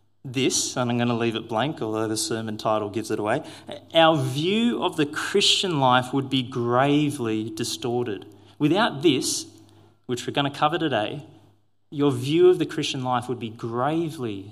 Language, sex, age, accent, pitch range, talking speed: English, male, 30-49, Australian, 105-150 Hz, 175 wpm